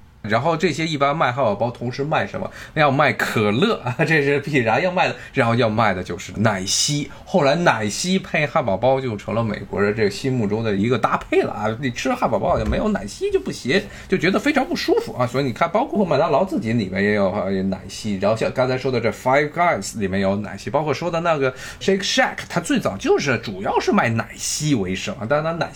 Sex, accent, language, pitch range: male, native, Chinese, 110-155 Hz